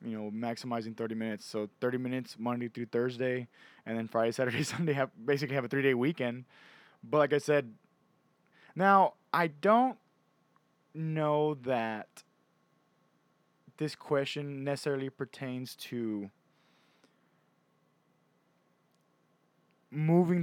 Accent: American